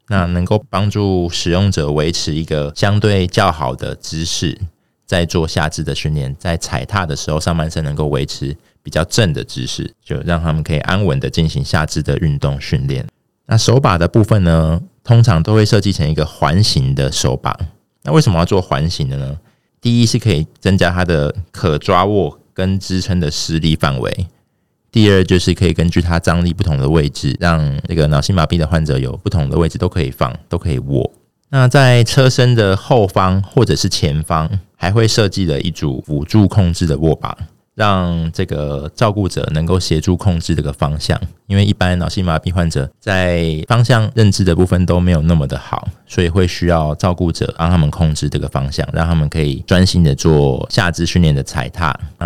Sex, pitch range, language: male, 80-100 Hz, Chinese